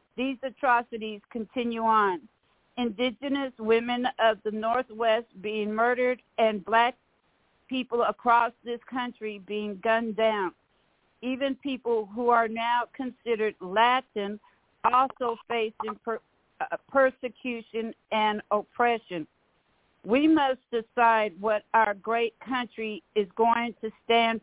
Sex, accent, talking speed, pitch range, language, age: female, American, 105 wpm, 215-245 Hz, English, 60-79